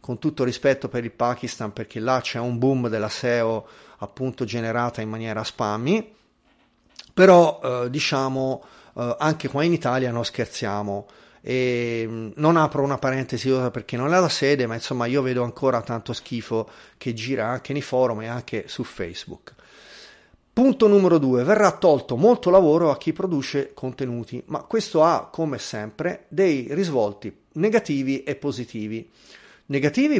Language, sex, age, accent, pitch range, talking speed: Italian, male, 40-59, native, 115-155 Hz, 155 wpm